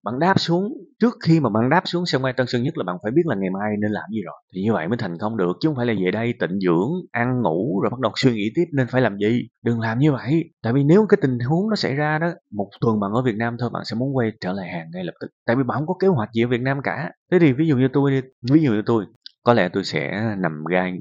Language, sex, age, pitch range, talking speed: Vietnamese, male, 20-39, 100-140 Hz, 320 wpm